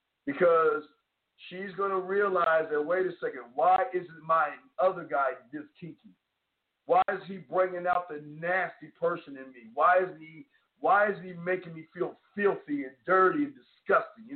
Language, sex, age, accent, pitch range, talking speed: English, male, 50-69, American, 170-210 Hz, 170 wpm